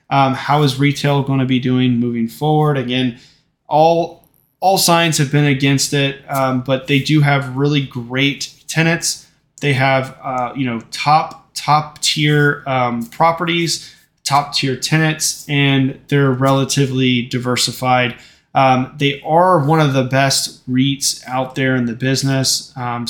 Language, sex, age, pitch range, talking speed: English, male, 20-39, 130-155 Hz, 150 wpm